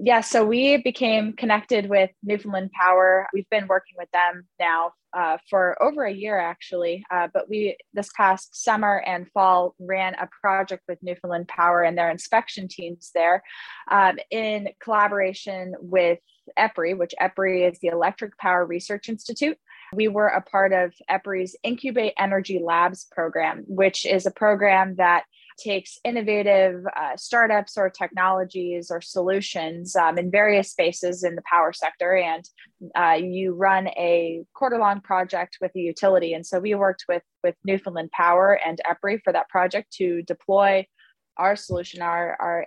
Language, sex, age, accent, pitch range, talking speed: English, female, 20-39, American, 175-200 Hz, 160 wpm